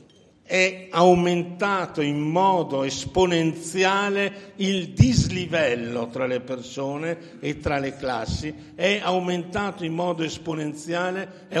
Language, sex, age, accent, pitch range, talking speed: Italian, male, 60-79, native, 140-175 Hz, 100 wpm